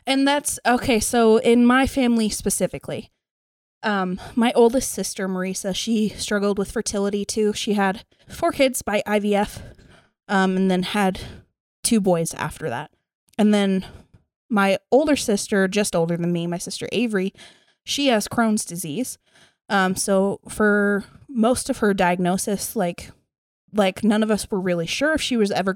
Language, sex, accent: English, female, American